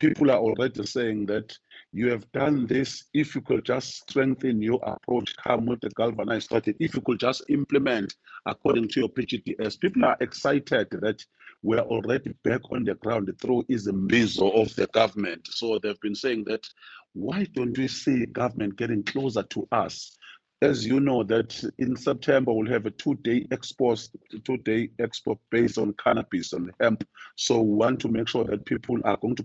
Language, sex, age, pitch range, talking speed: English, male, 50-69, 110-130 Hz, 185 wpm